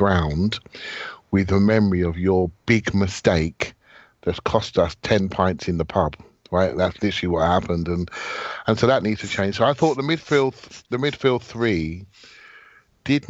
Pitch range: 85-110 Hz